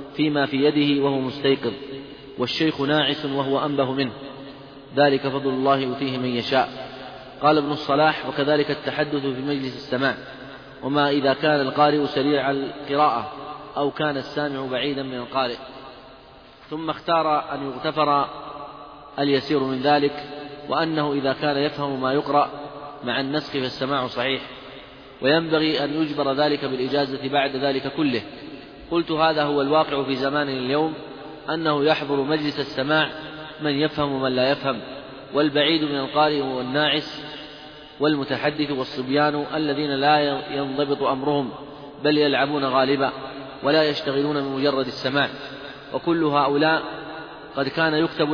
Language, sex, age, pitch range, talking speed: Arabic, male, 30-49, 135-150 Hz, 125 wpm